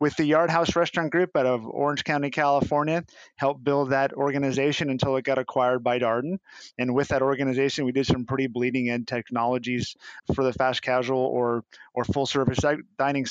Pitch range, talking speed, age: 120-140 Hz, 185 wpm, 30-49